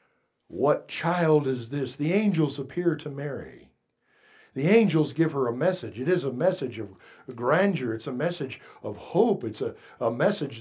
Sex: male